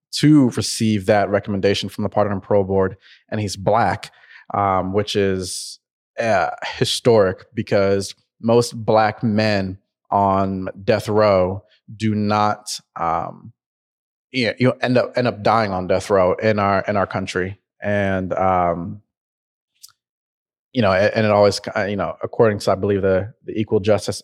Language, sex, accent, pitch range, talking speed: English, male, American, 95-110 Hz, 150 wpm